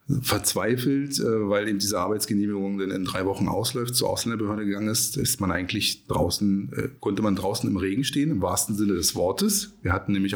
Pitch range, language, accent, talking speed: 95-125 Hz, German, German, 185 wpm